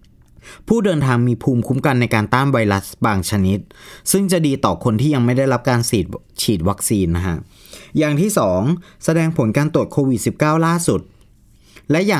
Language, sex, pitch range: Thai, male, 110-150 Hz